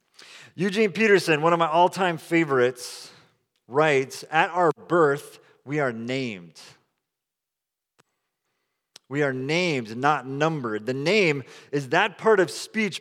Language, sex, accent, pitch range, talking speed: English, male, American, 130-165 Hz, 120 wpm